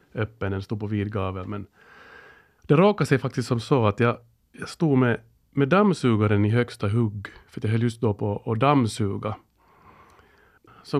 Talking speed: 160 wpm